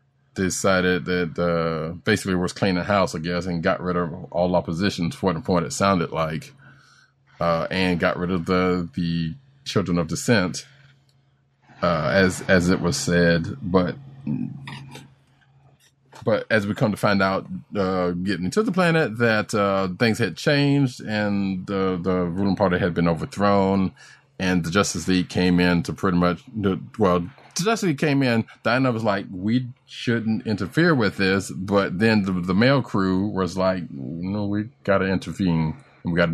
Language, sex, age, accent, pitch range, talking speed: English, male, 30-49, American, 90-130 Hz, 165 wpm